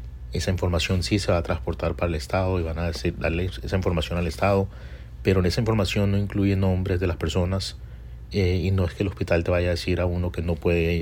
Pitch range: 85-100 Hz